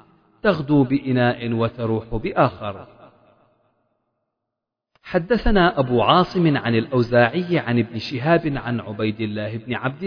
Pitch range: 115-155 Hz